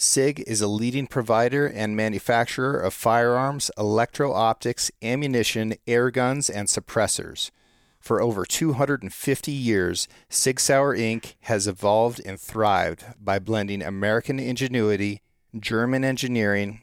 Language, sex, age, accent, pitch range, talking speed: English, male, 40-59, American, 105-130 Hz, 115 wpm